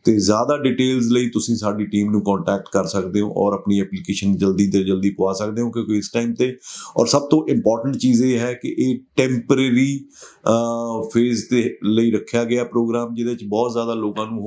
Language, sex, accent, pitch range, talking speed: Hindi, male, native, 105-120 Hz, 175 wpm